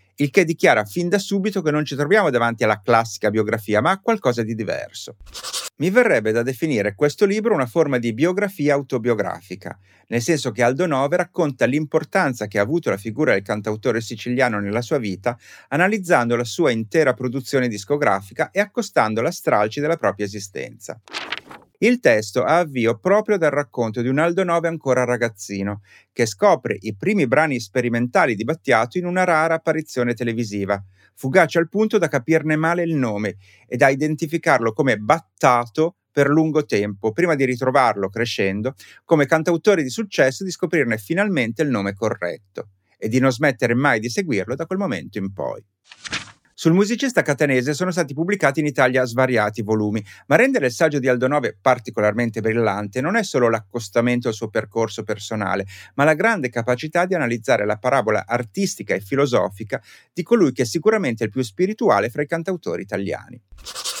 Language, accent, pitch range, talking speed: Italian, native, 115-165 Hz, 170 wpm